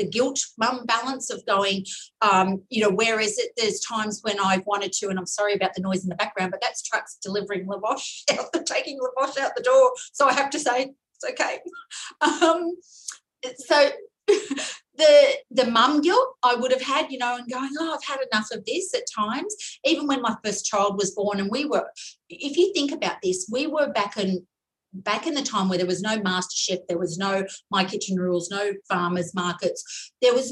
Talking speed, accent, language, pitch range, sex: 210 wpm, Australian, English, 200-285 Hz, female